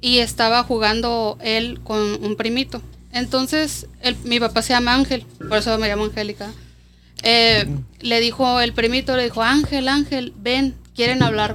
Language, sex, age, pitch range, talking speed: Spanish, female, 30-49, 220-265 Hz, 155 wpm